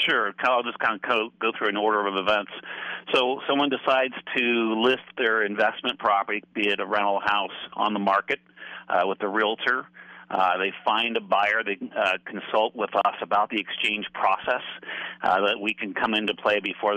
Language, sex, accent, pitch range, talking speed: English, male, American, 100-115 Hz, 185 wpm